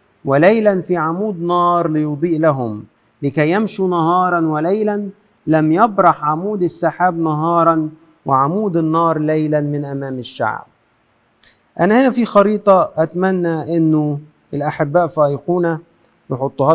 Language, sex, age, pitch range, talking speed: Arabic, male, 50-69, 160-205 Hz, 110 wpm